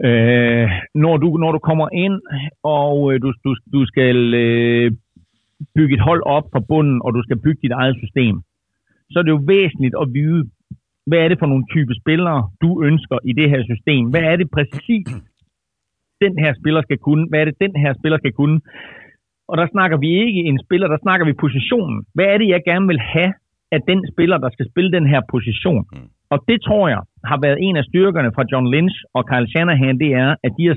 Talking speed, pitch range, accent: 215 wpm, 130-170 Hz, native